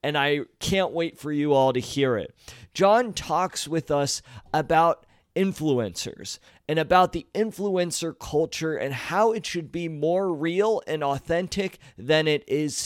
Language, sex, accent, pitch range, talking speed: English, male, American, 140-175 Hz, 155 wpm